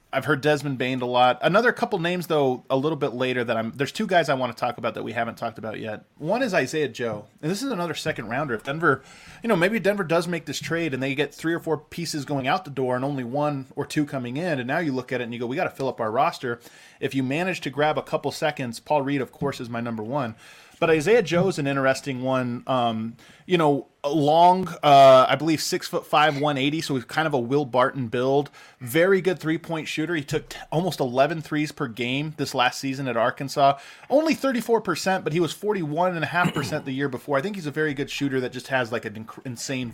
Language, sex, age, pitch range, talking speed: English, male, 20-39, 125-155 Hz, 250 wpm